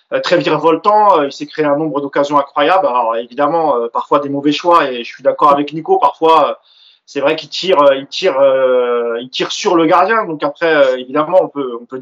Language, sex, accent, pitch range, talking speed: French, male, French, 140-180 Hz, 200 wpm